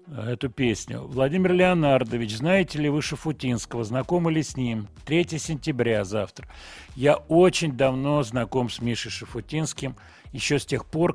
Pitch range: 110-145 Hz